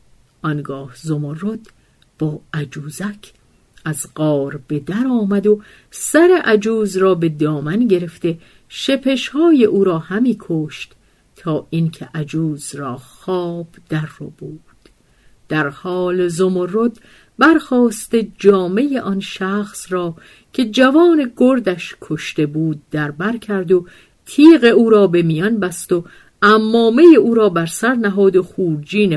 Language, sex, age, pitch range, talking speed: Persian, female, 50-69, 155-220 Hz, 125 wpm